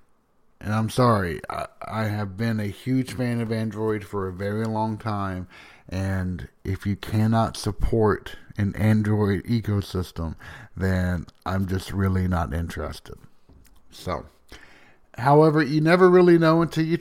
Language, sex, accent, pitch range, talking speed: English, male, American, 95-115 Hz, 140 wpm